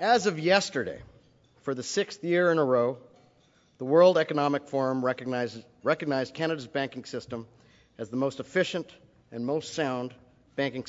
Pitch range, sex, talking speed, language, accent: 120-155 Hz, male, 145 wpm, English, American